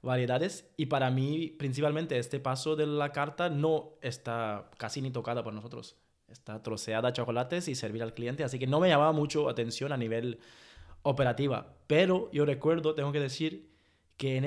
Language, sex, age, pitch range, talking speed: Spanish, male, 20-39, 120-150 Hz, 175 wpm